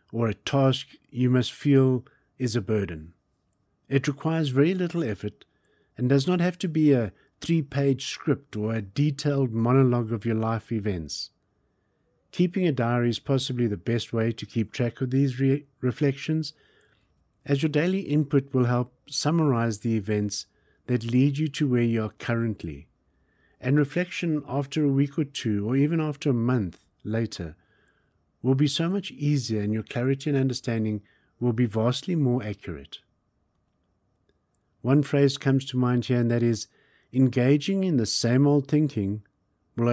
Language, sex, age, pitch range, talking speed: English, male, 50-69, 110-145 Hz, 160 wpm